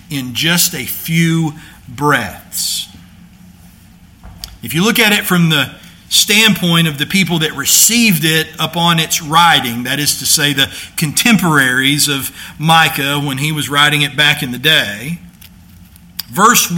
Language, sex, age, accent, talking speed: English, male, 50-69, American, 145 wpm